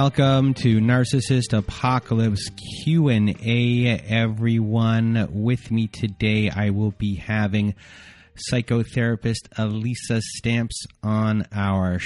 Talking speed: 90 wpm